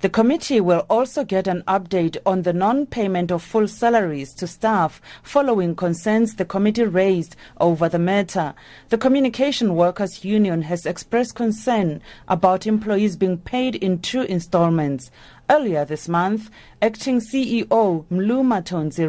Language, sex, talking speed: English, female, 140 wpm